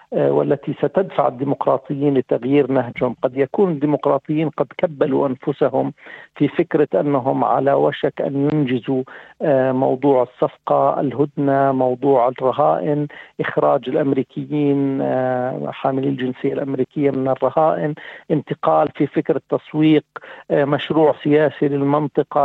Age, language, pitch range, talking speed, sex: 50-69, Arabic, 135-150 Hz, 100 wpm, male